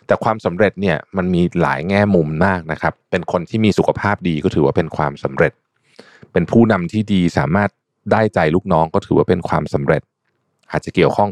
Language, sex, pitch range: Thai, male, 90-125 Hz